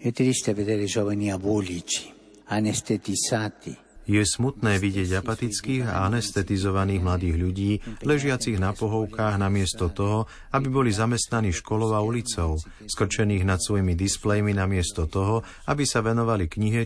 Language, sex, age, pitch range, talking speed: Slovak, male, 50-69, 95-115 Hz, 105 wpm